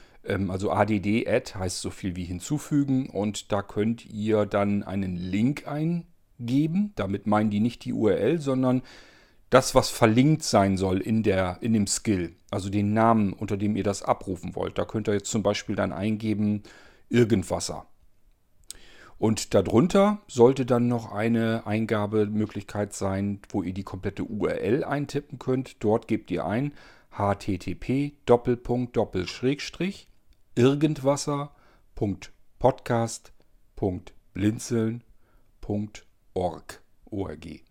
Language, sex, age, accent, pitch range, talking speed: German, male, 40-59, German, 100-125 Hz, 115 wpm